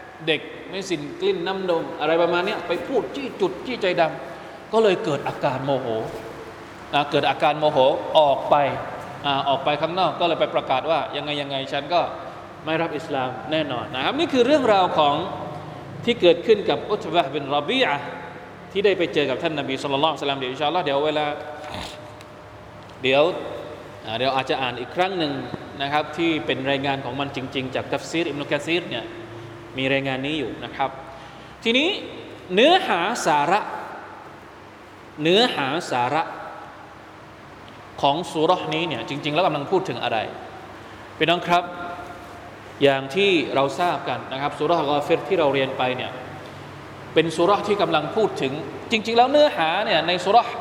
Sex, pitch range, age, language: male, 140-185 Hz, 20-39, Thai